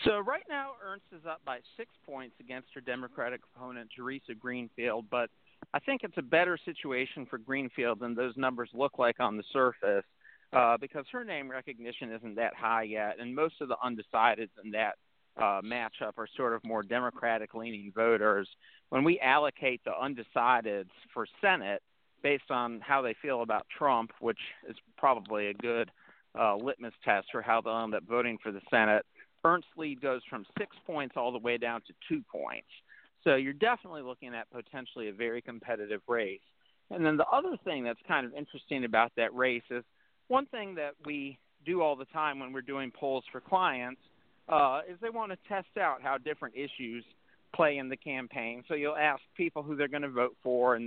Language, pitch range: English, 120-150 Hz